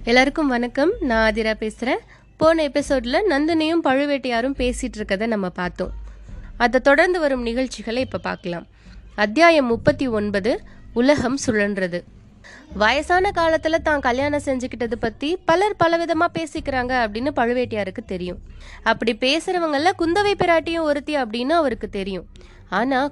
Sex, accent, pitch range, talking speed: female, native, 235-330 Hz, 115 wpm